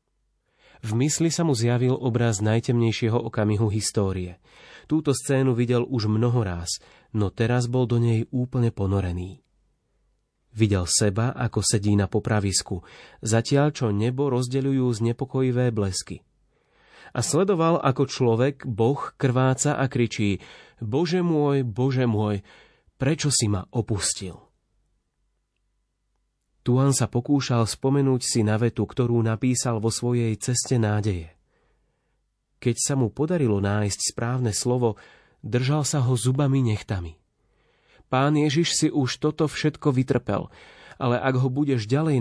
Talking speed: 125 wpm